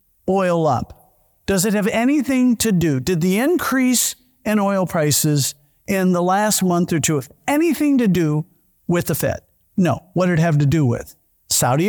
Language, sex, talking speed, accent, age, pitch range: English, male, 180 wpm, American, 50-69, 145-200 Hz